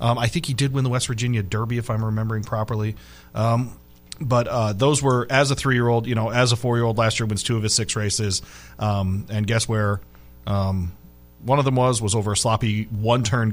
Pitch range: 110-135 Hz